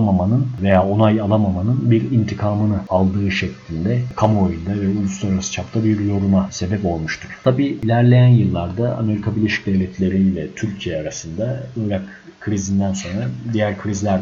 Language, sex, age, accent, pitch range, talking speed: Turkish, male, 50-69, native, 95-110 Hz, 120 wpm